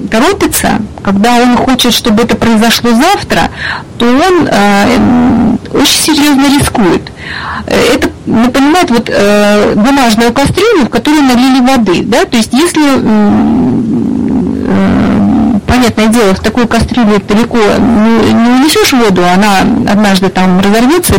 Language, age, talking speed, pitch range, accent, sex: Russian, 30-49, 120 wpm, 220-275 Hz, native, female